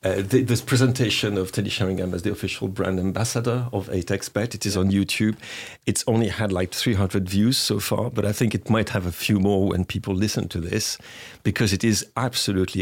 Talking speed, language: 205 wpm, English